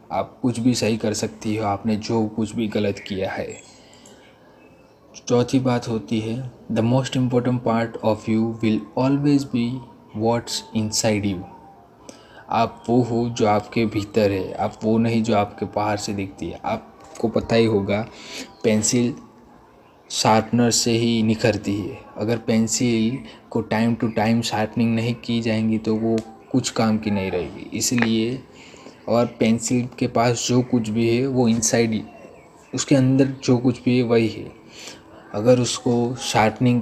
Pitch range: 105-120 Hz